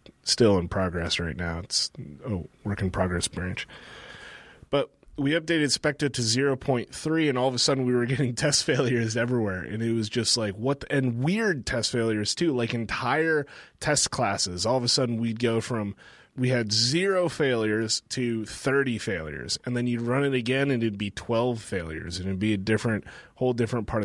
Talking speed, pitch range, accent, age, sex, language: 190 wpm, 110-135 Hz, American, 30-49, male, English